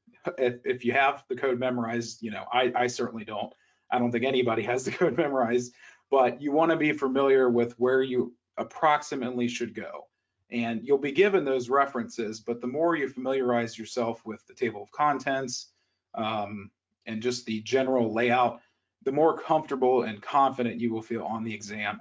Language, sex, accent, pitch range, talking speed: English, male, American, 110-135 Hz, 180 wpm